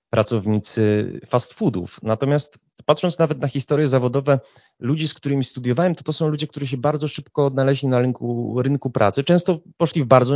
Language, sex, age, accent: Polish, male, 30-49, native